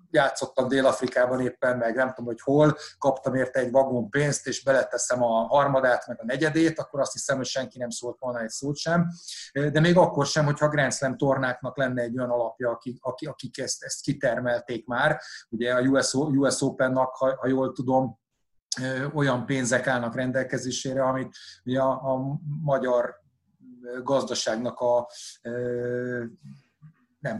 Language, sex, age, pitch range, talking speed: Hungarian, male, 30-49, 120-140 Hz, 140 wpm